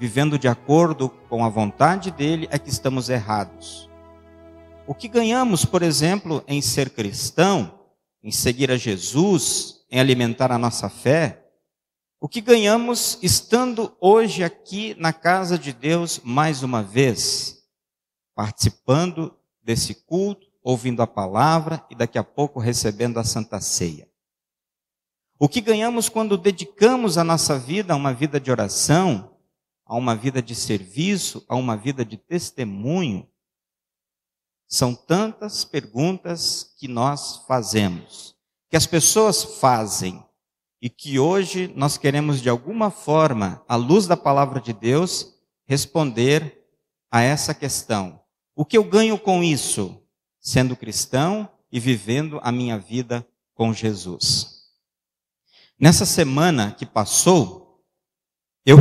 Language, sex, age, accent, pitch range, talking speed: Portuguese, male, 50-69, Brazilian, 115-170 Hz, 130 wpm